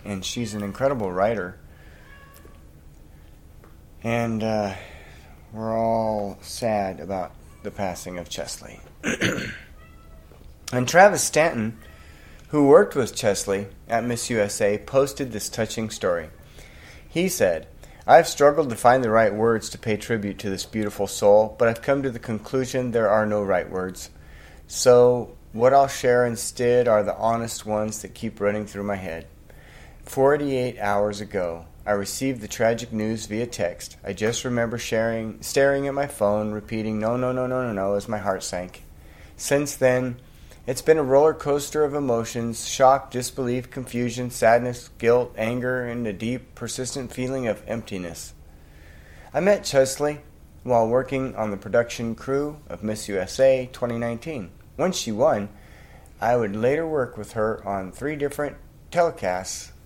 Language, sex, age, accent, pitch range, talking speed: English, male, 30-49, American, 95-125 Hz, 150 wpm